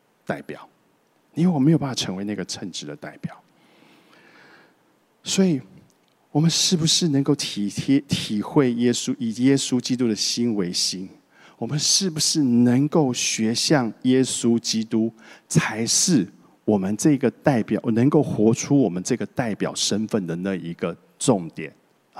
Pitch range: 105-145 Hz